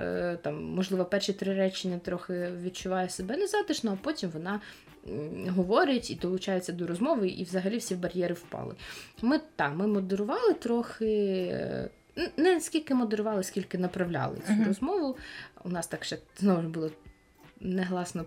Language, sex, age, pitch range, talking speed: Ukrainian, female, 20-39, 170-210 Hz, 140 wpm